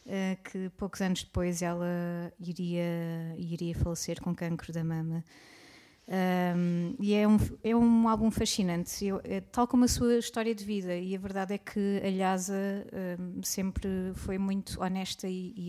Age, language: 20-39, Portuguese